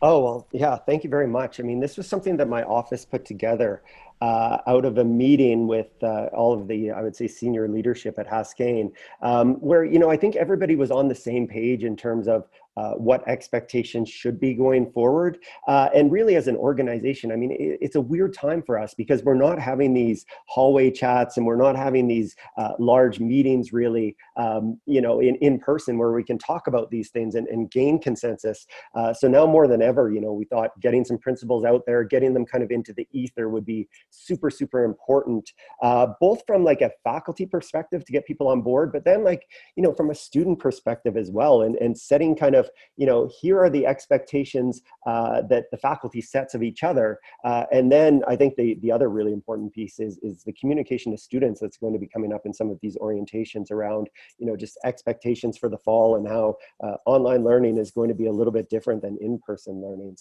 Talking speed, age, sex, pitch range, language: 225 wpm, 30-49, male, 115-135 Hz, English